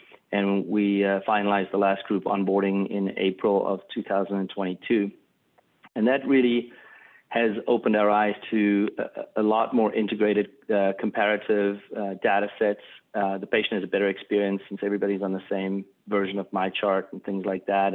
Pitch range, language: 100-110 Hz, English